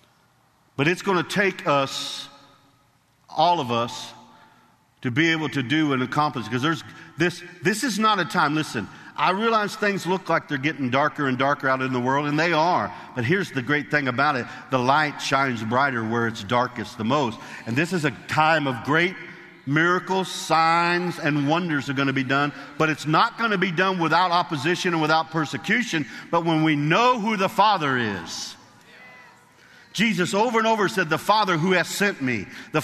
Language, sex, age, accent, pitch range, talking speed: English, male, 50-69, American, 140-185 Hz, 195 wpm